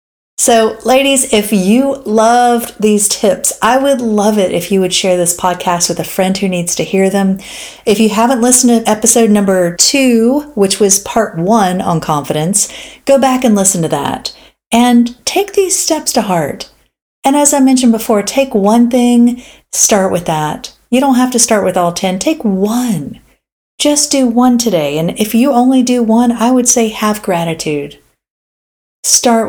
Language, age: English, 40-59